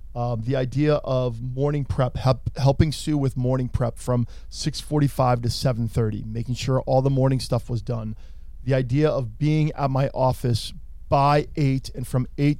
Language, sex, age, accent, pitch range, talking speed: English, male, 40-59, American, 120-145 Hz, 165 wpm